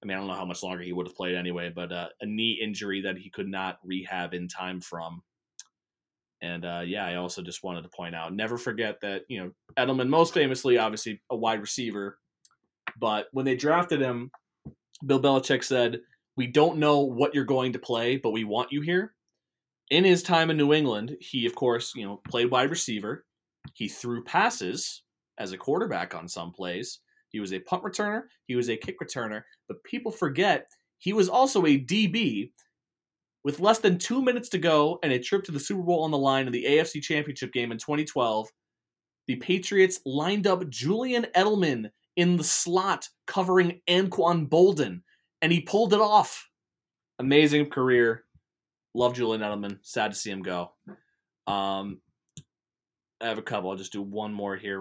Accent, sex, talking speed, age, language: American, male, 185 wpm, 20-39, English